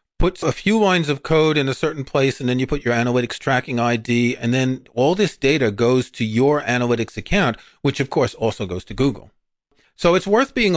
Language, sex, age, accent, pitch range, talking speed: English, male, 40-59, American, 120-155 Hz, 215 wpm